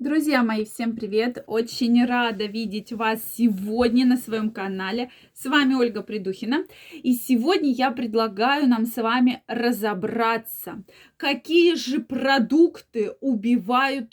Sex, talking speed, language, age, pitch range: female, 120 wpm, Russian, 20-39, 225-275 Hz